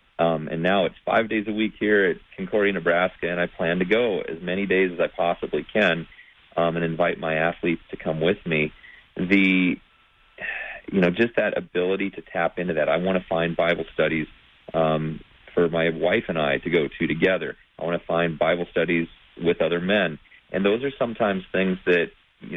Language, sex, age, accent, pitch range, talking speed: English, male, 40-59, American, 85-95 Hz, 200 wpm